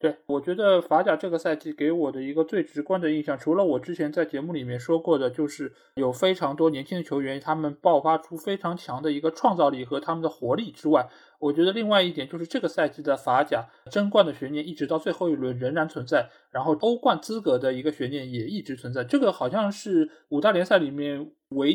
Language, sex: Chinese, male